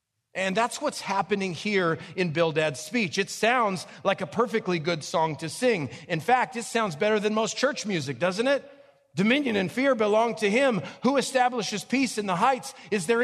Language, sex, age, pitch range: English, male, 40-59, 125-195 Hz